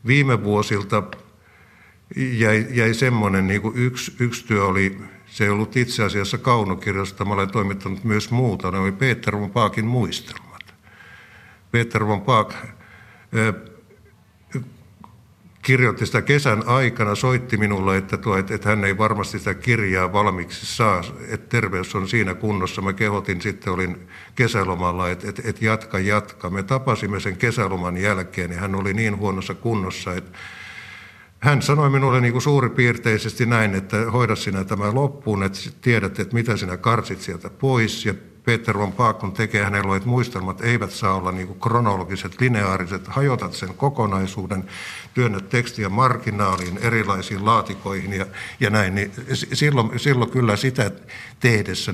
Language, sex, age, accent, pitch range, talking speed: Finnish, male, 60-79, native, 95-120 Hz, 145 wpm